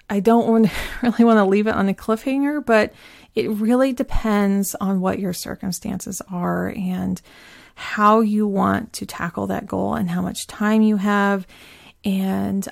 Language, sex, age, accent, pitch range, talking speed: English, female, 30-49, American, 190-220 Hz, 165 wpm